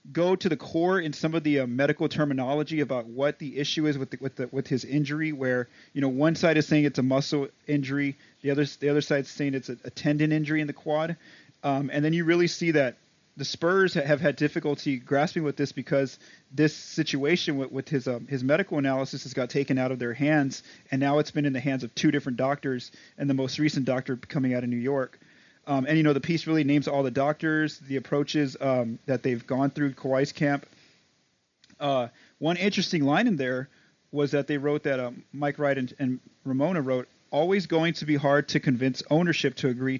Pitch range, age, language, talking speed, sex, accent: 135-155 Hz, 30-49, English, 225 wpm, male, American